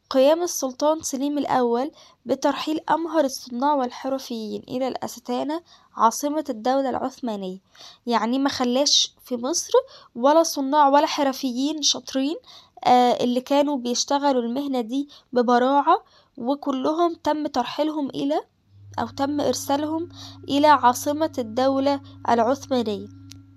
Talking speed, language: 100 wpm, Arabic